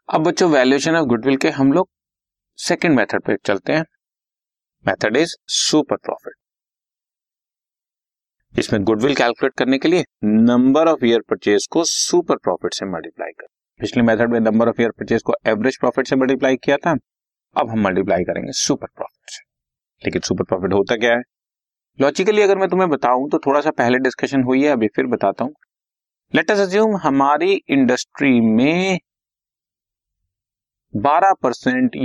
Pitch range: 120-165 Hz